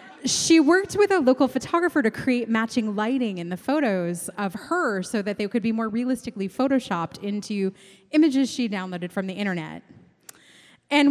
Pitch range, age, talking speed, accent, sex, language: 200-270 Hz, 20-39, 170 wpm, American, female, English